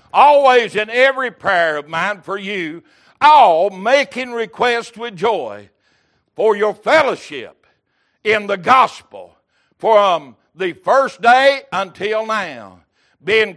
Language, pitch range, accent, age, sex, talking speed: English, 200-260 Hz, American, 60-79, male, 115 wpm